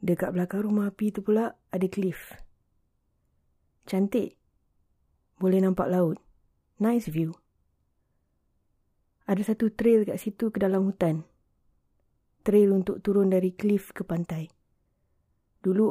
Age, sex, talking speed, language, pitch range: 20-39, female, 115 wpm, Malay, 160-200 Hz